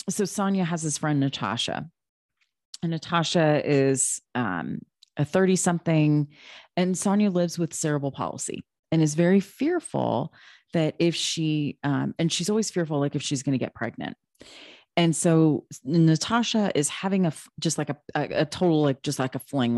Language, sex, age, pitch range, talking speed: English, female, 30-49, 140-170 Hz, 165 wpm